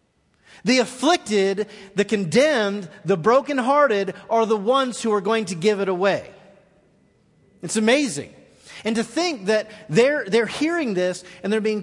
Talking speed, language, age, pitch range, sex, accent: 150 wpm, English, 30-49, 200-260 Hz, male, American